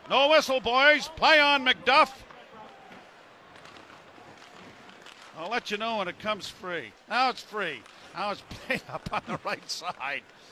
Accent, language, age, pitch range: American, English, 50-69, 215-255 Hz